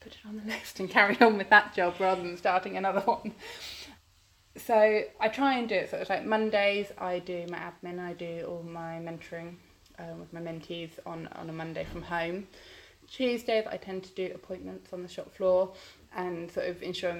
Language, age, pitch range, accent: English, 20-39, 165-200 Hz, British